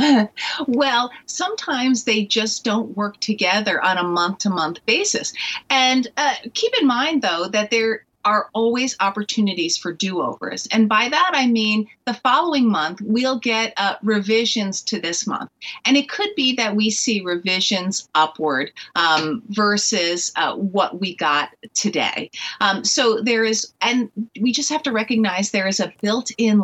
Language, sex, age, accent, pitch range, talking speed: English, female, 40-59, American, 180-235 Hz, 155 wpm